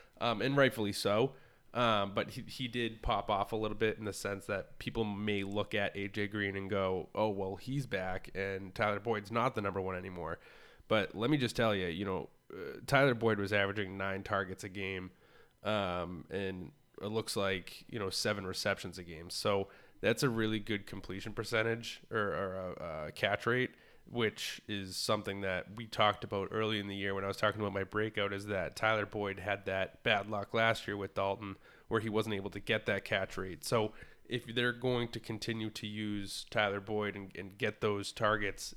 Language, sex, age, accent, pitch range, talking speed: English, male, 20-39, American, 95-110 Hz, 205 wpm